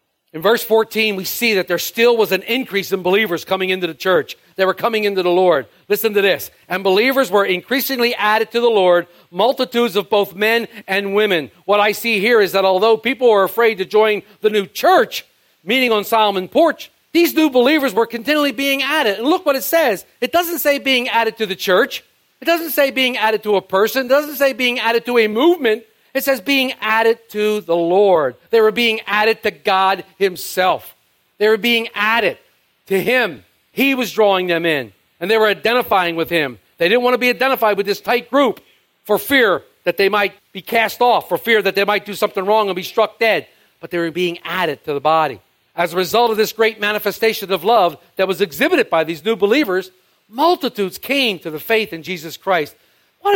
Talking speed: 215 wpm